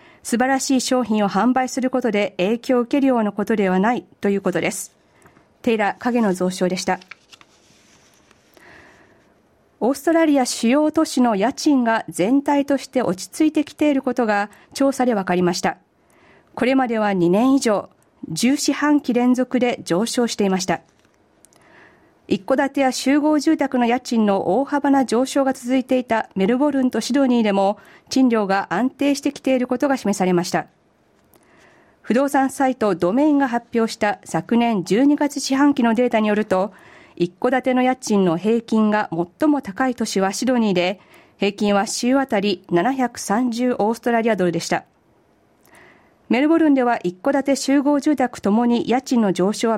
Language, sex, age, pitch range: Japanese, female, 40-59, 200-265 Hz